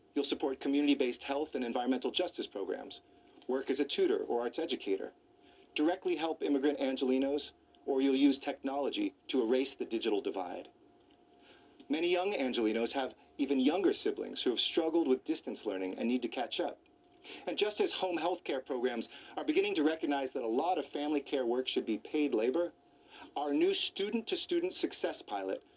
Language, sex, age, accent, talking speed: English, male, 40-59, American, 170 wpm